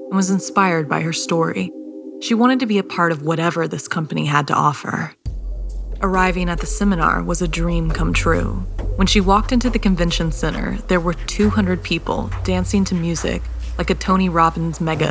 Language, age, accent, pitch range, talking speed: English, 20-39, American, 150-190 Hz, 185 wpm